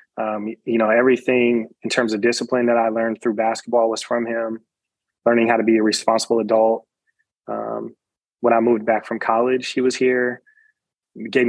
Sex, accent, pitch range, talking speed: male, American, 115-130 Hz, 180 wpm